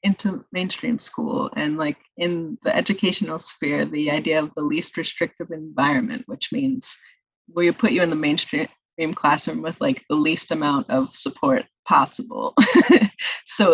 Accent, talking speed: American, 150 wpm